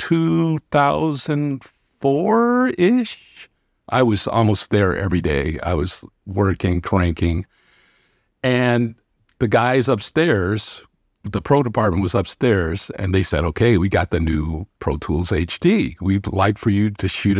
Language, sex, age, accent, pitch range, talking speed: English, male, 50-69, American, 95-125 Hz, 130 wpm